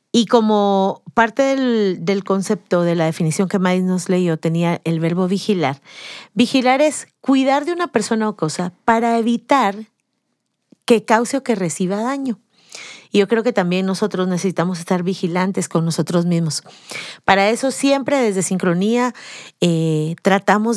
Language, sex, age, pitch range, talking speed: Spanish, female, 40-59, 180-240 Hz, 150 wpm